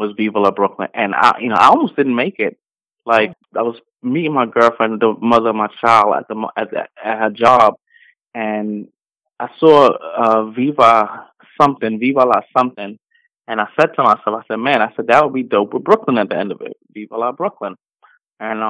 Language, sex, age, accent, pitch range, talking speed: English, male, 20-39, American, 110-140 Hz, 210 wpm